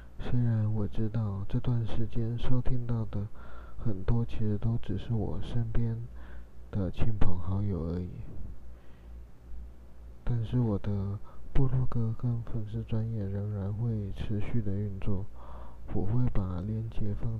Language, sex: Chinese, male